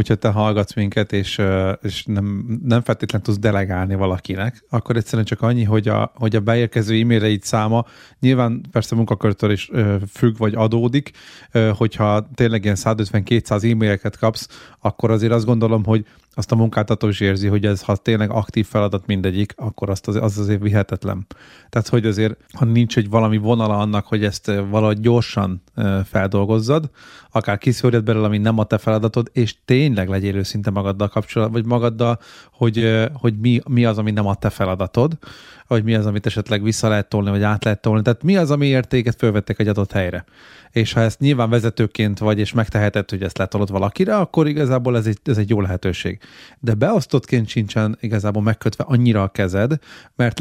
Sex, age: male, 30-49